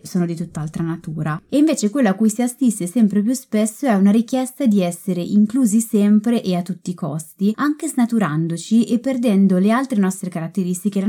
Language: Italian